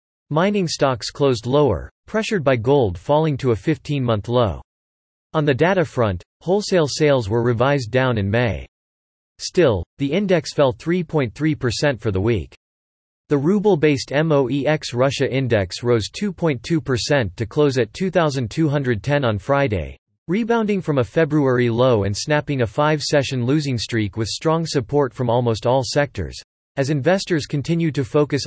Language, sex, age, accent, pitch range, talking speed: English, male, 40-59, American, 115-150 Hz, 140 wpm